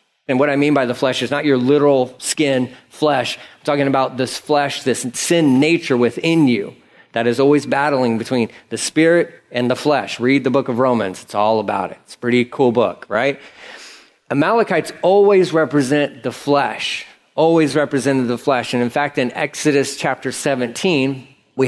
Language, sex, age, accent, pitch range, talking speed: English, male, 40-59, American, 125-155 Hz, 180 wpm